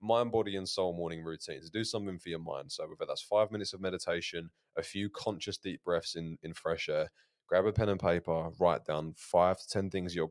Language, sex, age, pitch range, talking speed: English, male, 20-39, 80-100 Hz, 225 wpm